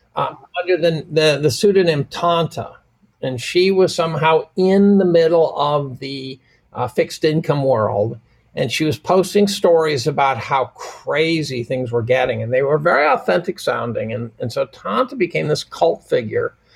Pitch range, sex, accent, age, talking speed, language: 130-195 Hz, male, American, 50-69, 160 wpm, English